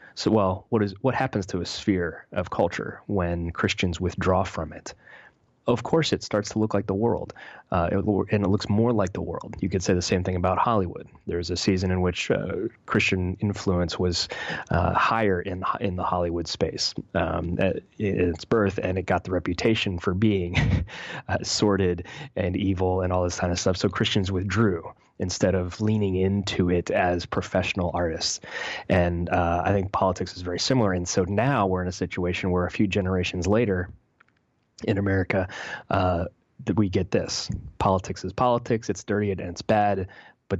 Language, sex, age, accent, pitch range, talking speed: English, male, 30-49, American, 90-105 Hz, 185 wpm